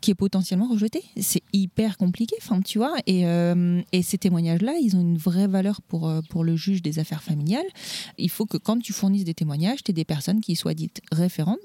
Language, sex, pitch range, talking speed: French, female, 170-205 Hz, 215 wpm